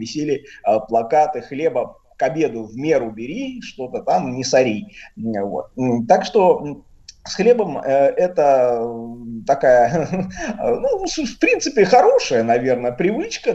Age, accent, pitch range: 30-49, native, 130-215 Hz